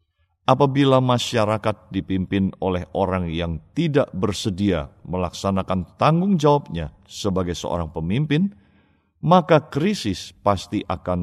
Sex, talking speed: male, 95 wpm